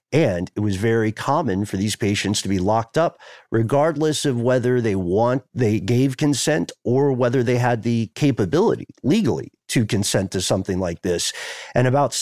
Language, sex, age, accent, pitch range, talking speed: English, male, 50-69, American, 105-130 Hz, 170 wpm